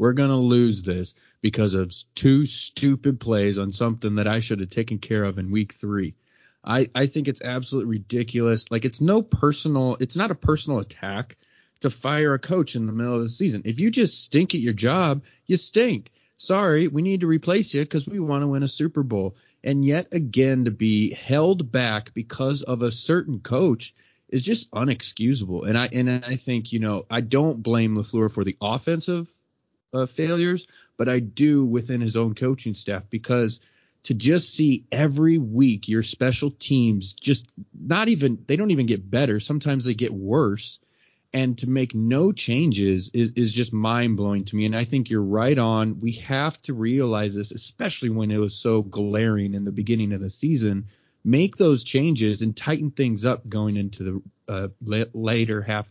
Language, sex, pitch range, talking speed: English, male, 110-140 Hz, 190 wpm